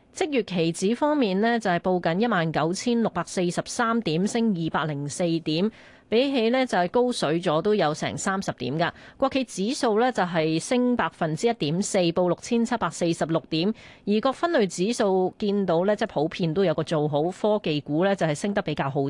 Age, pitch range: 20-39, 165-230 Hz